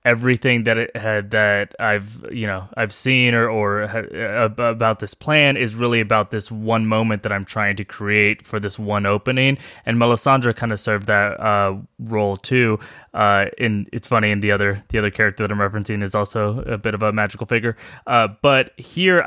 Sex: male